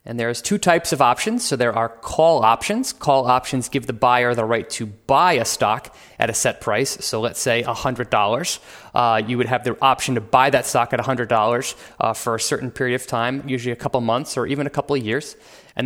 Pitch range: 125-160 Hz